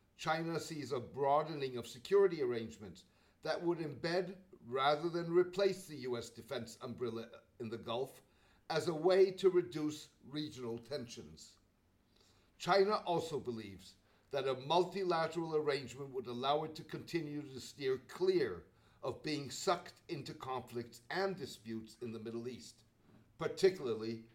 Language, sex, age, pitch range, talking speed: English, male, 60-79, 120-170 Hz, 135 wpm